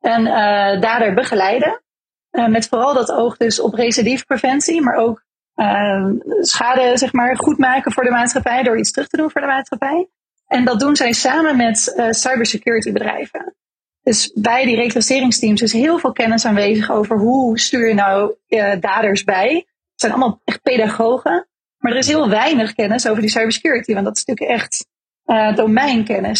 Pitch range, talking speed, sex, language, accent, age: 225-260 Hz, 180 wpm, female, Dutch, Dutch, 30-49